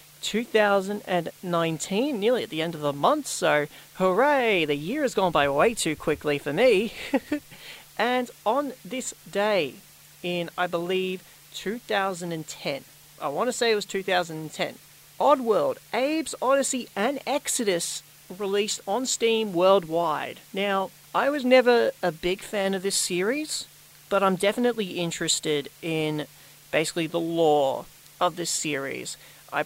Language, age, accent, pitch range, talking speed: English, 40-59, Australian, 150-200 Hz, 135 wpm